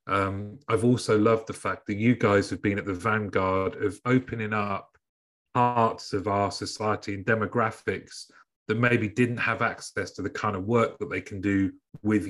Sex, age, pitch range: male, 30-49, 100-120 Hz